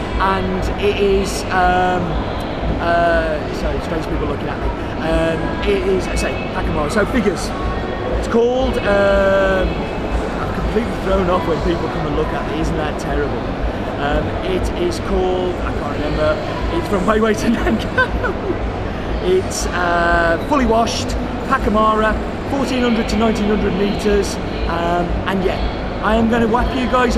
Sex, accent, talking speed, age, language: male, British, 150 wpm, 30-49, English